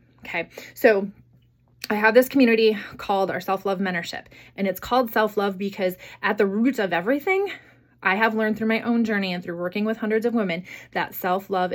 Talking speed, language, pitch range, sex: 185 wpm, English, 185-225 Hz, female